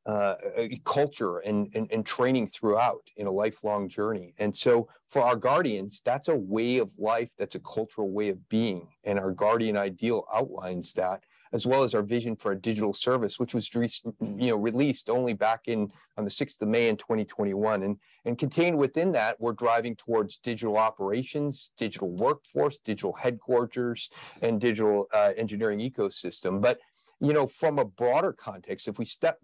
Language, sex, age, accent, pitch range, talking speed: English, male, 40-59, American, 105-130 Hz, 175 wpm